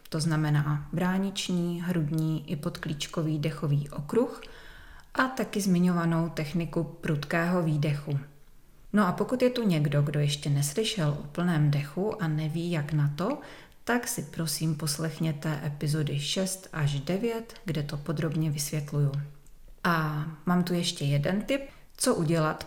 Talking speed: 135 wpm